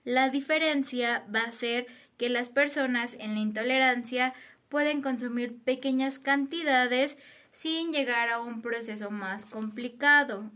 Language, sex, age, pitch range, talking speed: Spanish, female, 20-39, 220-270 Hz, 125 wpm